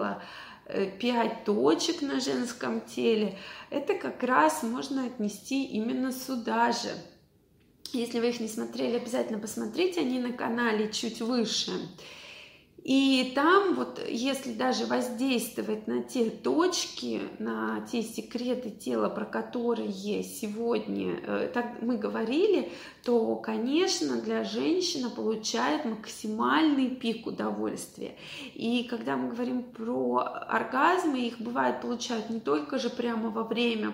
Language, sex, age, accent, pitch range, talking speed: Russian, female, 20-39, native, 220-255 Hz, 115 wpm